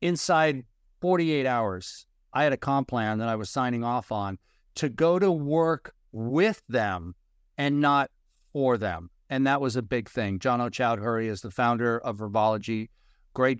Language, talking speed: English, 170 wpm